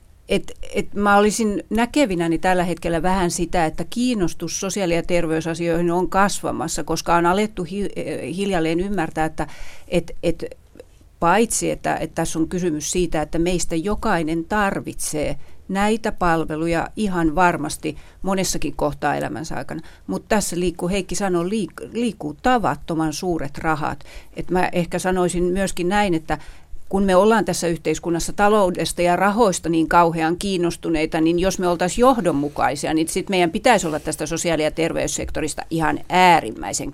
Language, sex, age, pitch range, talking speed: Finnish, female, 40-59, 165-200 Hz, 135 wpm